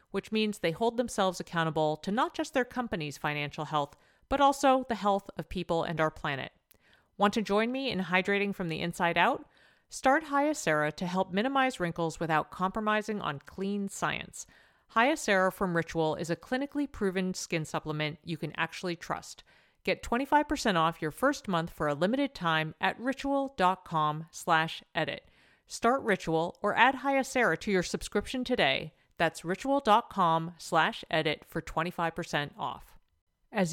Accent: American